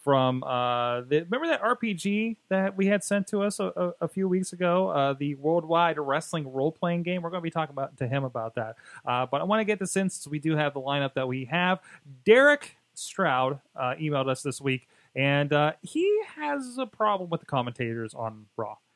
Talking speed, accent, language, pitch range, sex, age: 220 wpm, American, English, 125-170 Hz, male, 30-49